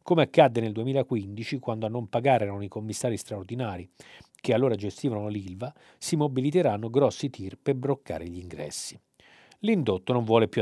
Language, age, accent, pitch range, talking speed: Italian, 40-59, native, 110-140 Hz, 160 wpm